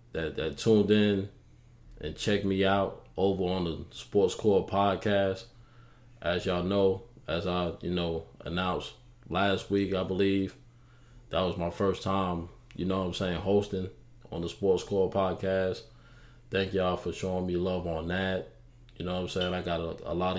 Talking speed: 175 wpm